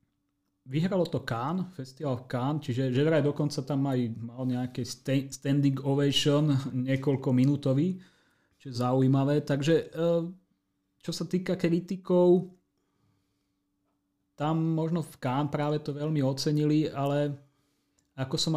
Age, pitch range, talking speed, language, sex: 30-49, 120-145 Hz, 115 wpm, Slovak, male